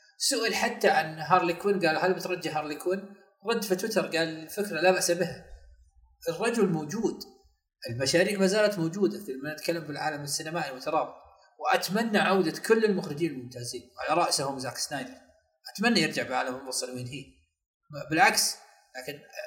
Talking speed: 140 wpm